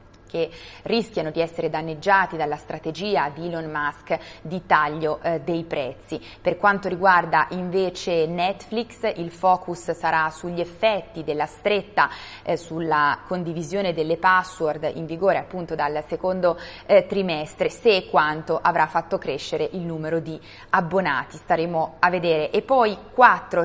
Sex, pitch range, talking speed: female, 160-185 Hz, 135 wpm